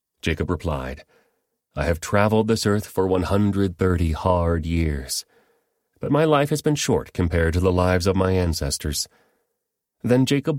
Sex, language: male, English